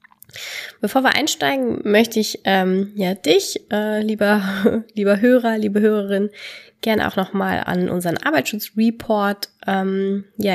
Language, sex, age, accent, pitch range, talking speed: German, female, 20-39, German, 180-215 Hz, 125 wpm